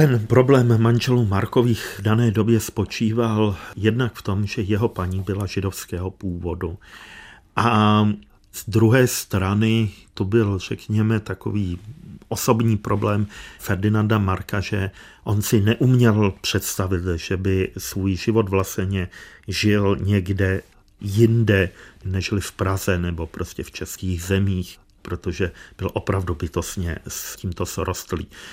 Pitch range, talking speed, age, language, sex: 90-110 Hz, 120 wpm, 40-59, Czech, male